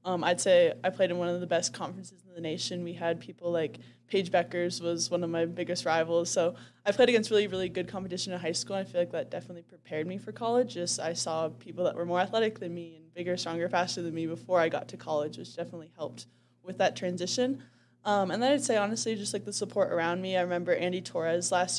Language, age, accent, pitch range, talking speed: English, 10-29, American, 170-185 Hz, 245 wpm